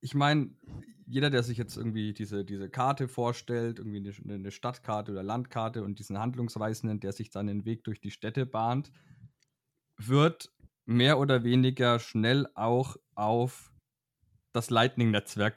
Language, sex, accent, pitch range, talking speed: German, male, German, 110-135 Hz, 145 wpm